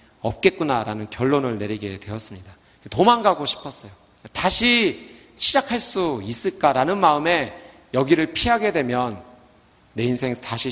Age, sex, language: 40-59, male, Korean